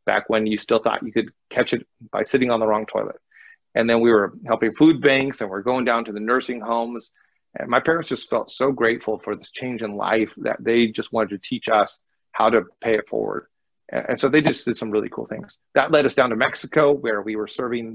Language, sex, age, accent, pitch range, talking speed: English, male, 40-59, American, 110-135 Hz, 245 wpm